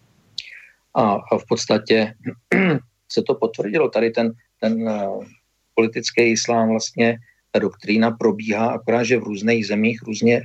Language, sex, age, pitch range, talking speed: Slovak, male, 50-69, 110-120 Hz, 120 wpm